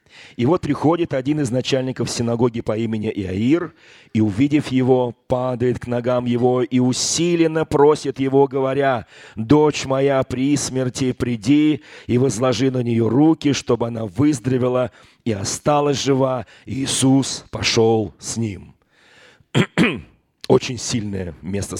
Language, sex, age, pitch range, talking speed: Russian, male, 40-59, 115-140 Hz, 125 wpm